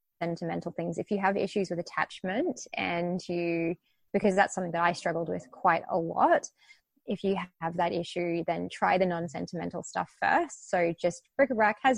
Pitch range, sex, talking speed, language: 175-215 Hz, female, 180 wpm, English